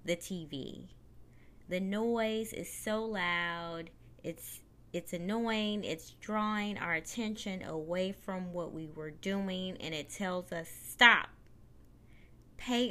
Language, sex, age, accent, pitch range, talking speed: English, female, 20-39, American, 160-200 Hz, 120 wpm